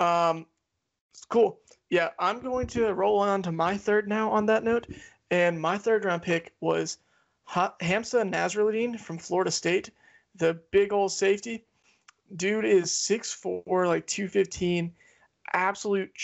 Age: 20-39